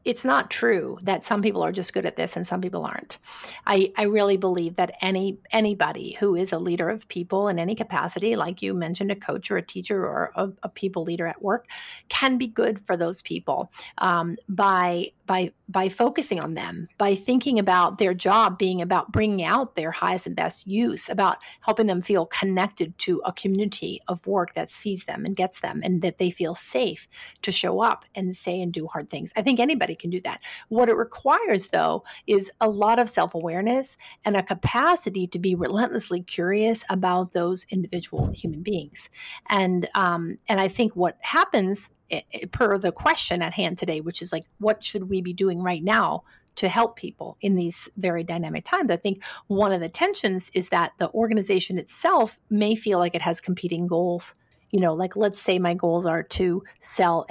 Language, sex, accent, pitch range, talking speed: English, female, American, 175-210 Hz, 195 wpm